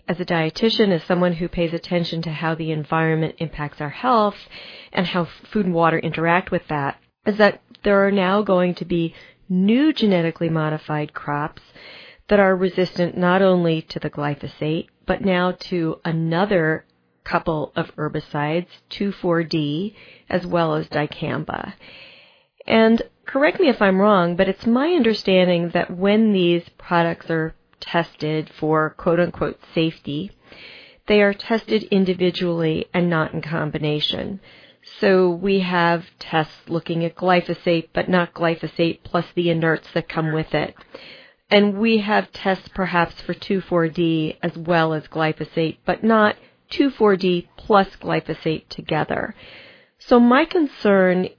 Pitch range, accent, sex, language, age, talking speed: 160-200 Hz, American, female, English, 40-59, 140 wpm